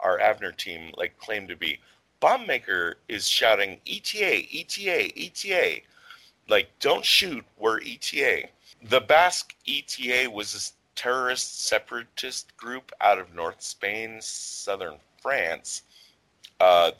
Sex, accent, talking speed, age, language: male, American, 120 wpm, 30-49, English